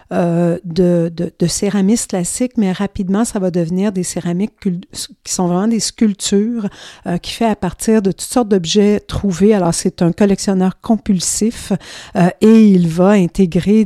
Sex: female